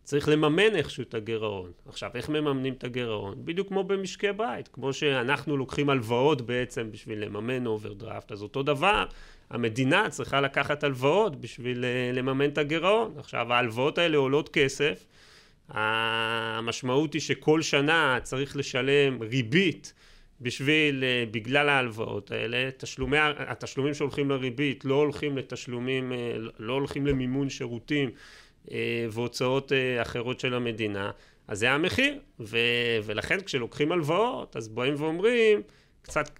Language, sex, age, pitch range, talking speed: Hebrew, male, 30-49, 120-150 Hz, 120 wpm